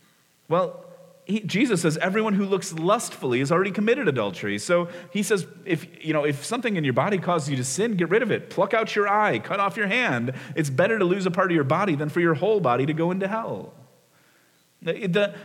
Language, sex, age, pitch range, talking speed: English, male, 30-49, 130-175 Hz, 225 wpm